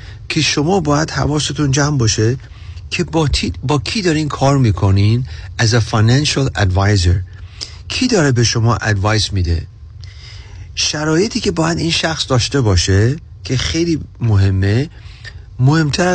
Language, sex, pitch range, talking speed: Persian, male, 100-140 Hz, 125 wpm